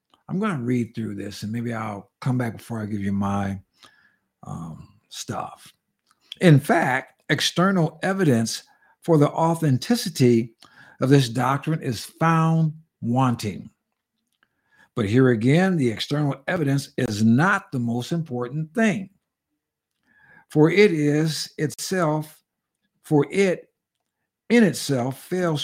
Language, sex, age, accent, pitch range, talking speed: English, male, 60-79, American, 120-165 Hz, 120 wpm